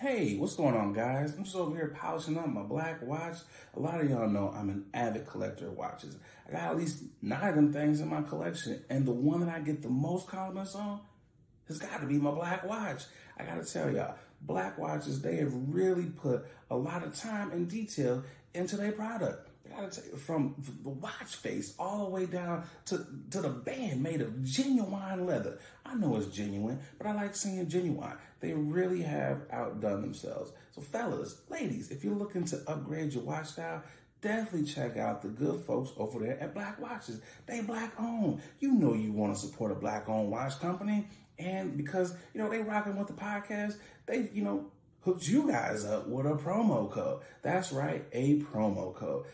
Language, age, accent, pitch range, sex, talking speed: English, 30-49, American, 130-190 Hz, male, 200 wpm